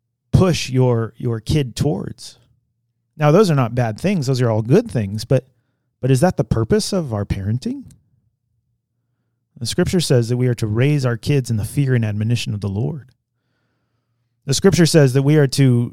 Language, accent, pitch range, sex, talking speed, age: English, American, 115-140 Hz, male, 190 wpm, 30-49